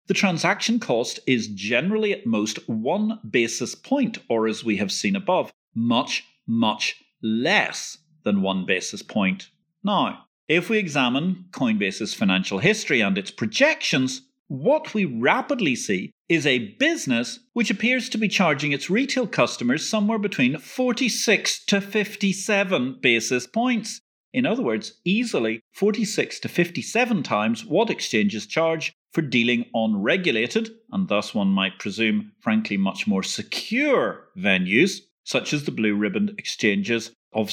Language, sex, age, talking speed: English, male, 40-59, 140 wpm